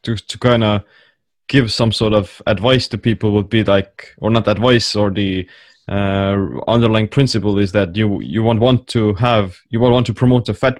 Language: English